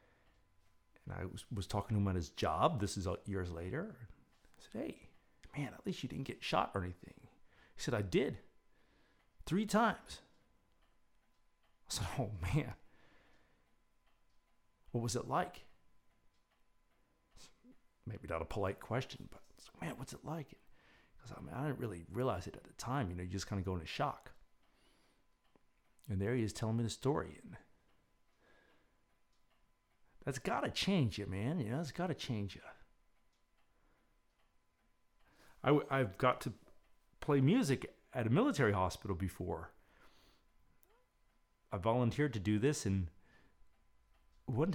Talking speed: 155 wpm